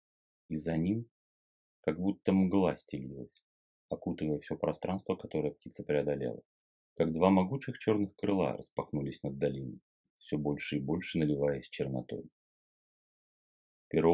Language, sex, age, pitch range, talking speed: Russian, male, 30-49, 75-95 Hz, 120 wpm